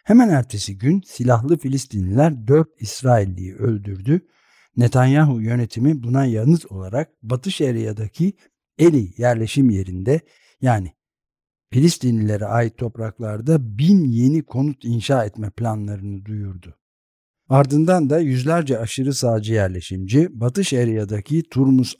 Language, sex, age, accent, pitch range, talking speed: Turkish, male, 60-79, native, 110-140 Hz, 105 wpm